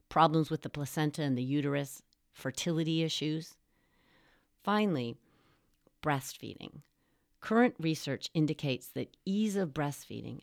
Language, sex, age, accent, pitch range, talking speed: English, female, 40-59, American, 130-170 Hz, 105 wpm